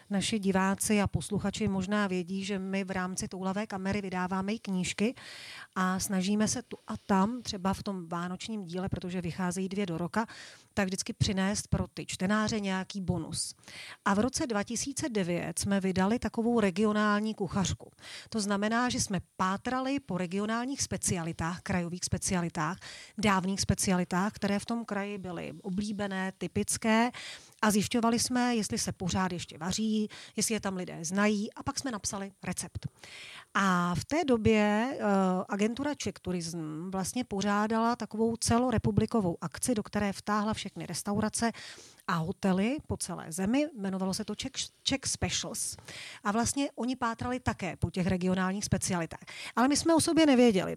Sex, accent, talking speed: female, native, 150 wpm